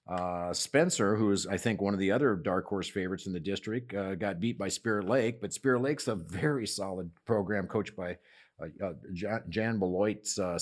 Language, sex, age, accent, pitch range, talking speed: English, male, 50-69, American, 90-110 Hz, 205 wpm